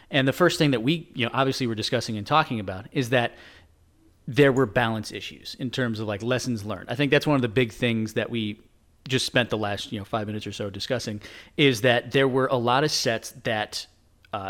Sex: male